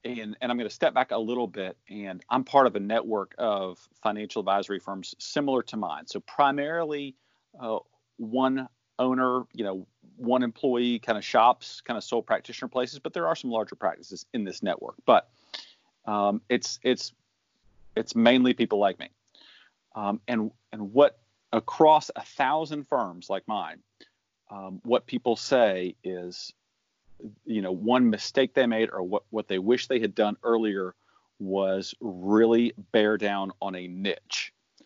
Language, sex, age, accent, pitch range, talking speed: English, male, 40-59, American, 100-125 Hz, 165 wpm